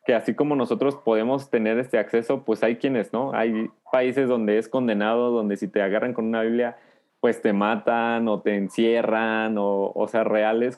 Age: 20-39